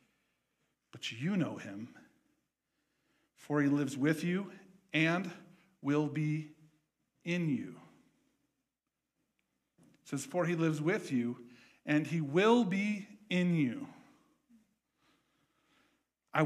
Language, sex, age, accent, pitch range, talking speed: English, male, 50-69, American, 145-180 Hz, 100 wpm